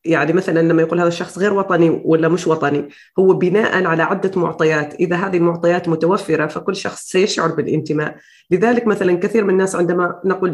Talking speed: 175 wpm